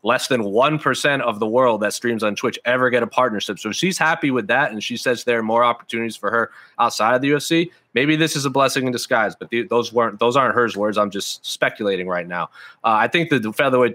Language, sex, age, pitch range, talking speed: English, male, 30-49, 110-130 Hz, 250 wpm